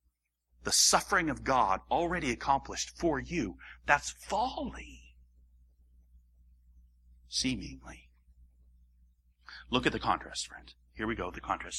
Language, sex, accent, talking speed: English, male, American, 105 wpm